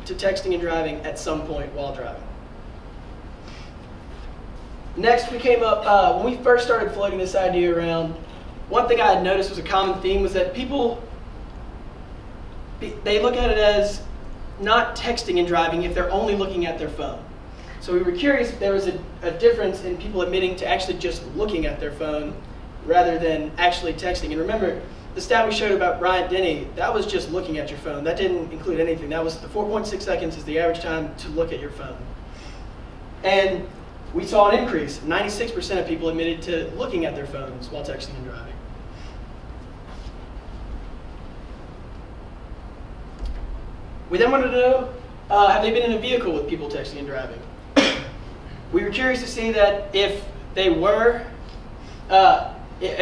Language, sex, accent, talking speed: English, male, American, 175 wpm